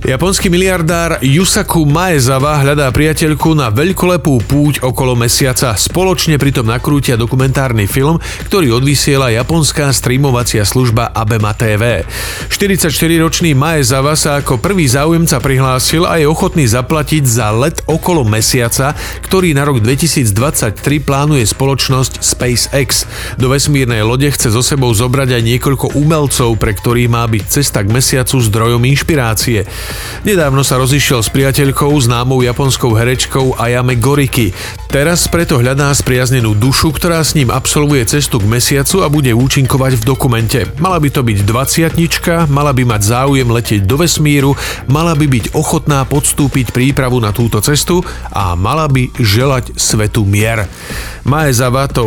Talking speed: 140 wpm